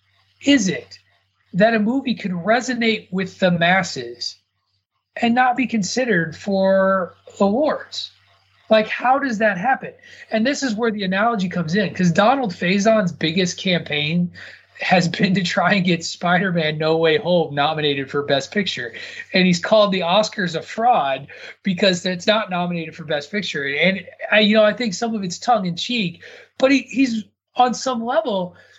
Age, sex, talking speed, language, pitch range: 30-49, male, 165 wpm, English, 150-220 Hz